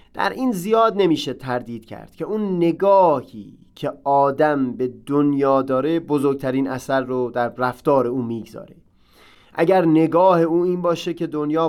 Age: 30-49